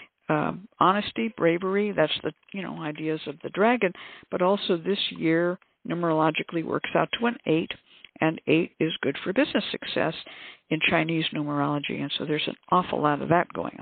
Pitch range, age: 165-210 Hz, 60-79